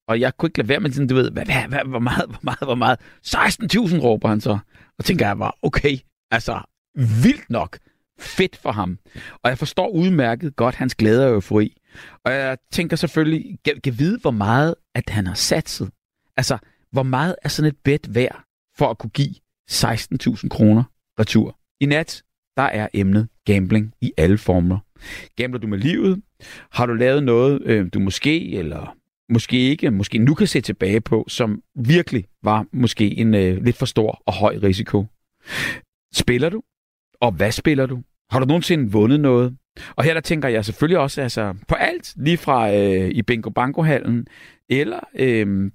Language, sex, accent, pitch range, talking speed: Danish, male, native, 110-145 Hz, 185 wpm